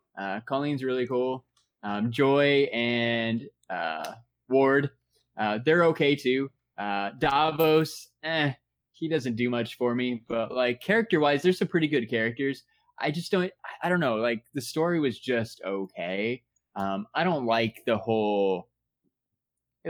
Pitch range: 110-150 Hz